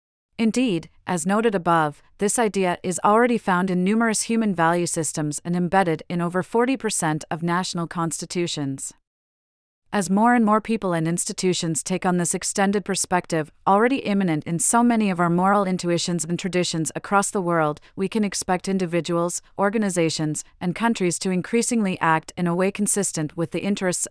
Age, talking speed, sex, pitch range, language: 30-49, 160 wpm, female, 165-200 Hz, English